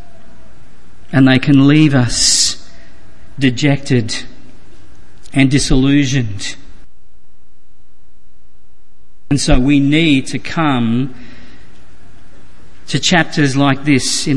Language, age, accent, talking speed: English, 50-69, Australian, 80 wpm